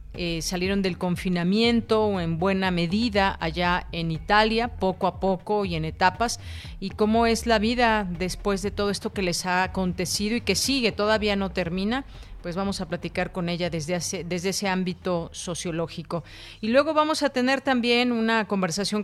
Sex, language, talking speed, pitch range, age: female, Spanish, 175 wpm, 175-210 Hz, 40-59